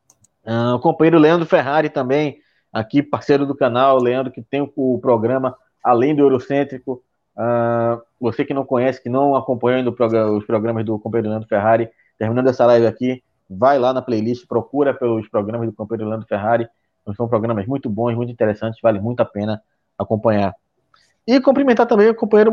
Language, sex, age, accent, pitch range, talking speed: Portuguese, male, 20-39, Brazilian, 115-180 Hz, 160 wpm